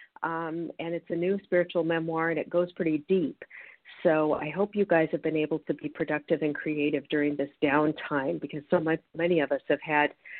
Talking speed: 210 wpm